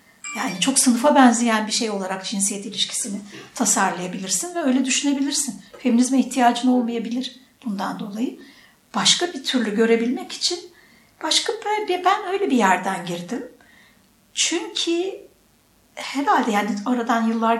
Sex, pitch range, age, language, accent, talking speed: female, 230-275 Hz, 60-79, Turkish, native, 120 wpm